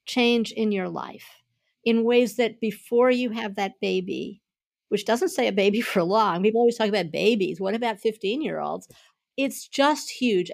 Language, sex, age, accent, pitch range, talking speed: English, female, 50-69, American, 195-240 Hz, 180 wpm